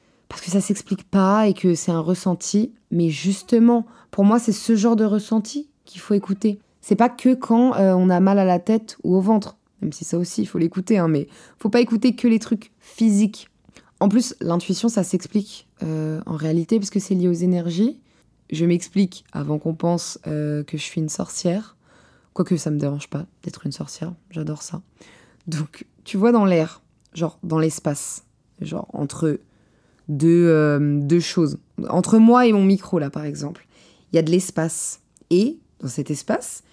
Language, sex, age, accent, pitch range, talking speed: French, female, 20-39, French, 165-215 Hz, 195 wpm